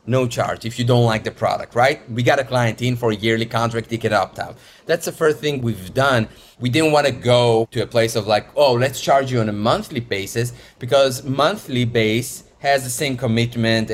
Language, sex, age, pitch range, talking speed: English, male, 30-49, 115-140 Hz, 225 wpm